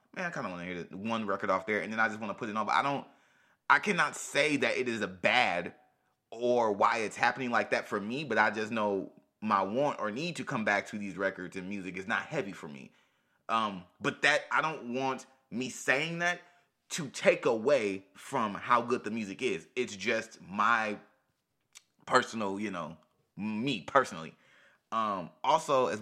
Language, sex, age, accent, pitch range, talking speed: English, male, 20-39, American, 100-125 Hz, 210 wpm